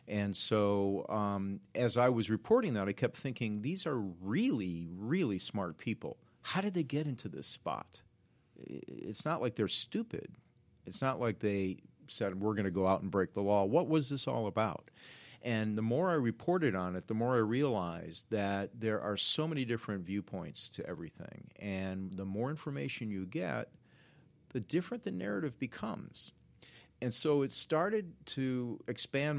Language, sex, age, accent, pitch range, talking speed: English, male, 50-69, American, 100-130 Hz, 175 wpm